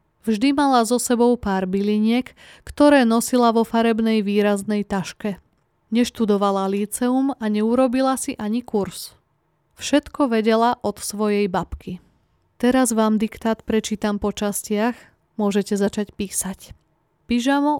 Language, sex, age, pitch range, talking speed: Slovak, female, 20-39, 200-245 Hz, 115 wpm